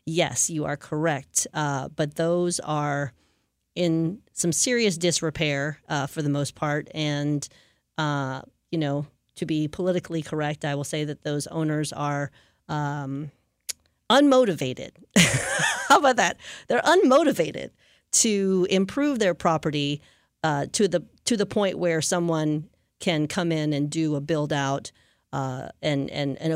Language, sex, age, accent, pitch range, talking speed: English, female, 40-59, American, 145-170 Hz, 140 wpm